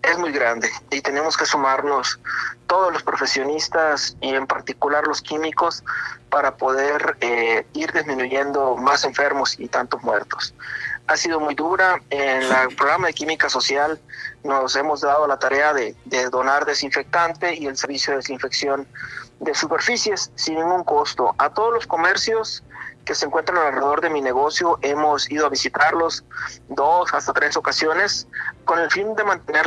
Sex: male